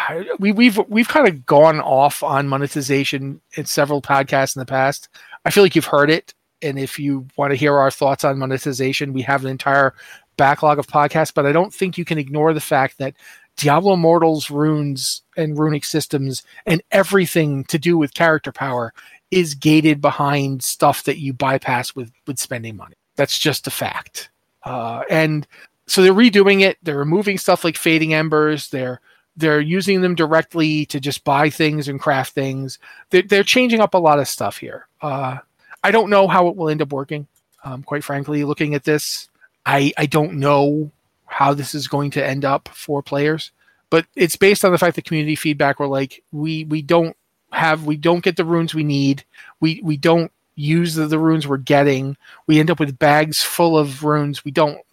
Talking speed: 195 wpm